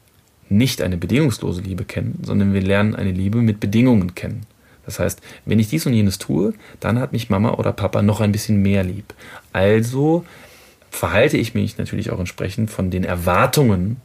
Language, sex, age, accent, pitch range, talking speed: German, male, 30-49, German, 95-110 Hz, 180 wpm